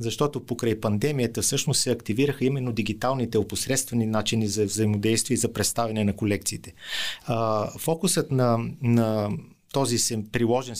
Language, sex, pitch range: Bulgarian, male, 115-135 Hz